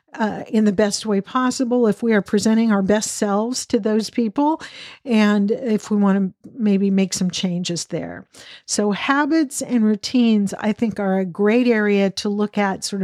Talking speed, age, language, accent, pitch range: 185 wpm, 50-69, English, American, 195-235 Hz